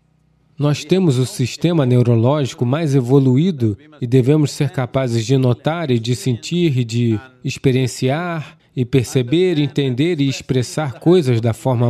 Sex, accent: male, Brazilian